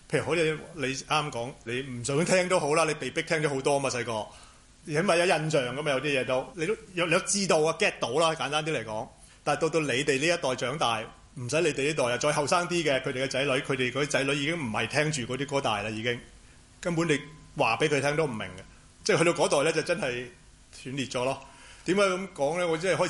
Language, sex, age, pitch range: Chinese, male, 30-49, 130-165 Hz